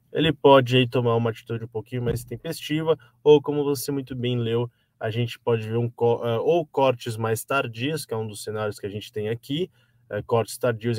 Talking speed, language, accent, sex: 190 wpm, Portuguese, Brazilian, male